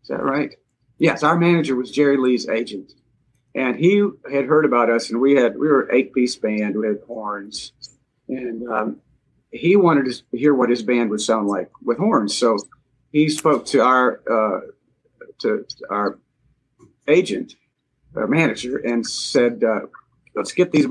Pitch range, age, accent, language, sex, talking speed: 120-135 Hz, 50-69, American, English, male, 170 wpm